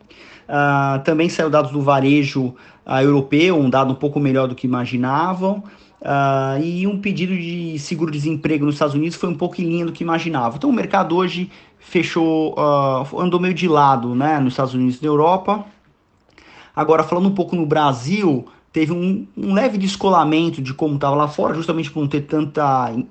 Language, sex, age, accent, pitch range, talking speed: Portuguese, male, 30-49, Brazilian, 140-165 Hz, 185 wpm